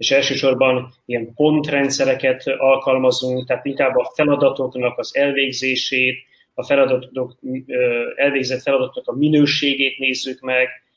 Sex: male